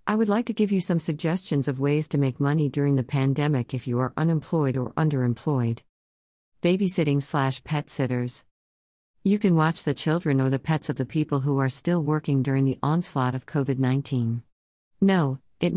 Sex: female